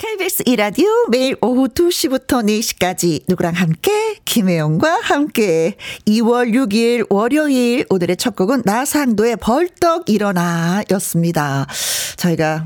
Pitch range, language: 175-265 Hz, Korean